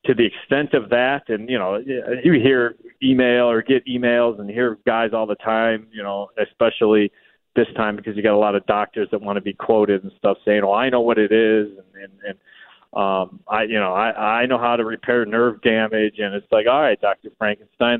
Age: 30-49